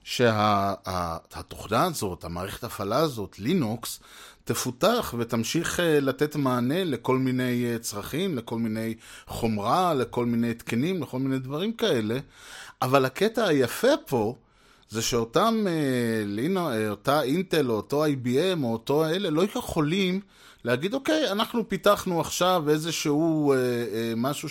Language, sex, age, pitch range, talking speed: Hebrew, male, 30-49, 115-170 Hz, 120 wpm